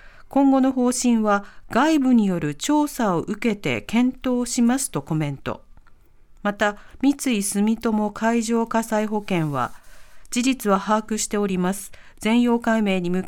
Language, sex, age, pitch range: Japanese, female, 40-59, 190-265 Hz